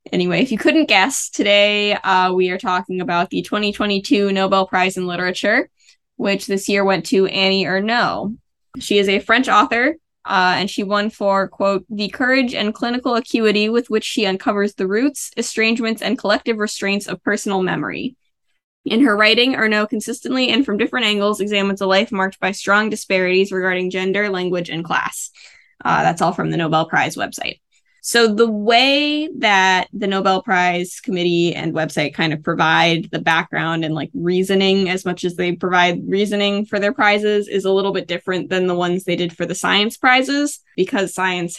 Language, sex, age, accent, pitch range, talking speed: English, female, 10-29, American, 175-210 Hz, 180 wpm